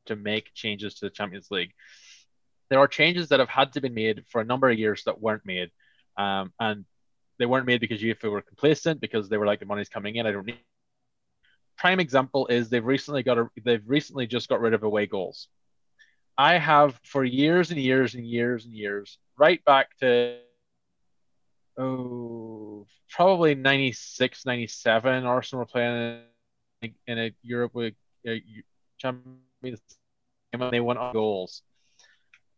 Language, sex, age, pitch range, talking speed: English, male, 20-39, 110-130 Hz, 165 wpm